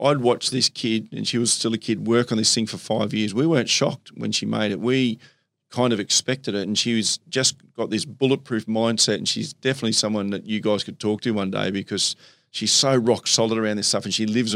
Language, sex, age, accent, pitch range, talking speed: English, male, 40-59, Australian, 105-125 Hz, 245 wpm